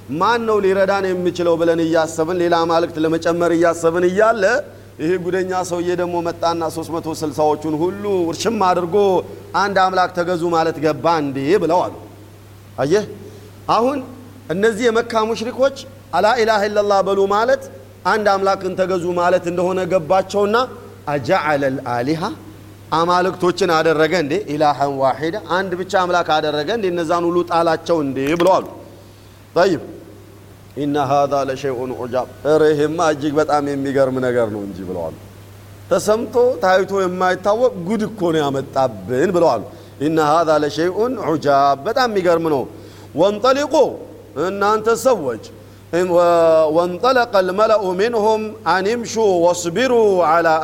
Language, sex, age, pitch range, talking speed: Amharic, male, 40-59, 140-190 Hz, 115 wpm